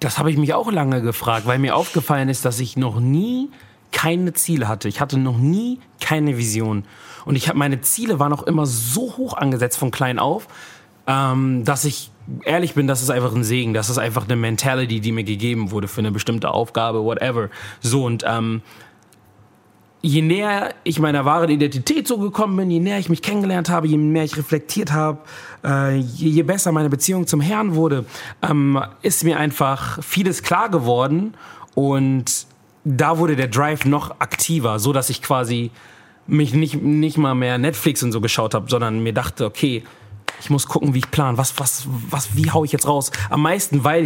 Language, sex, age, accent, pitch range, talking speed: German, male, 30-49, German, 125-160 Hz, 190 wpm